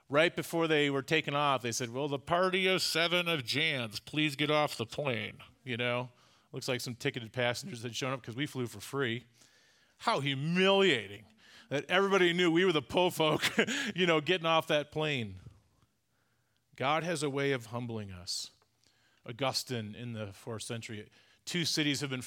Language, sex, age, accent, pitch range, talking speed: English, male, 40-59, American, 115-145 Hz, 180 wpm